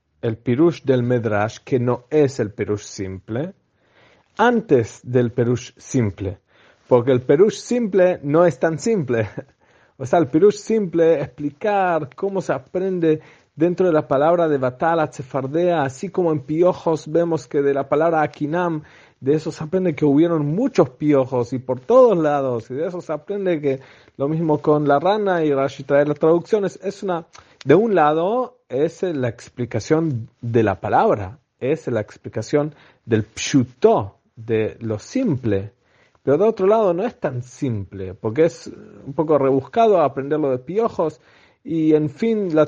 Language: English